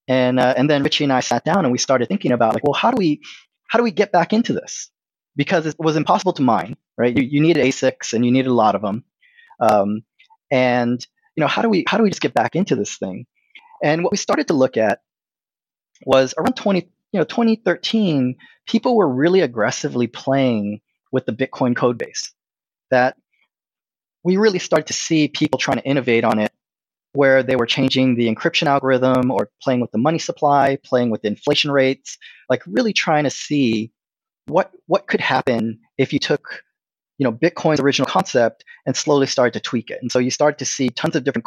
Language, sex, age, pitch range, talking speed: English, male, 30-49, 125-170 Hz, 210 wpm